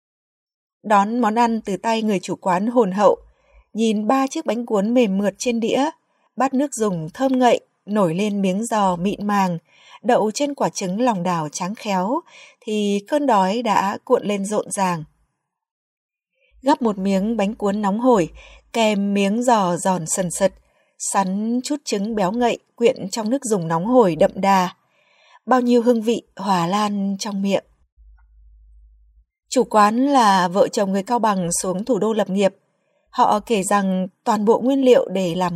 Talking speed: 170 wpm